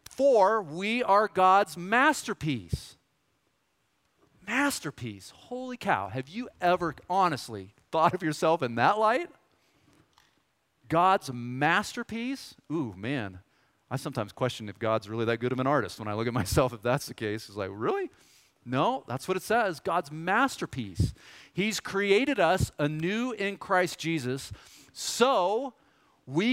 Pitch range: 130-200 Hz